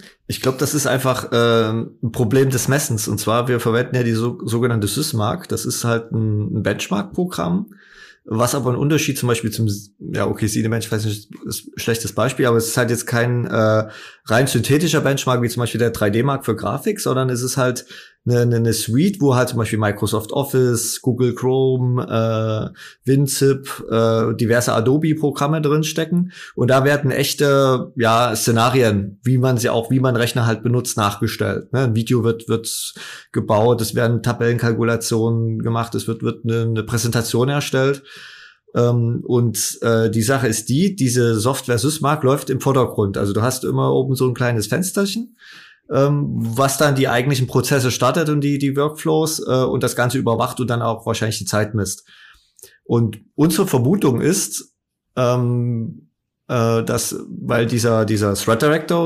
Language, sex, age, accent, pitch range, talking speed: German, male, 20-39, German, 115-135 Hz, 170 wpm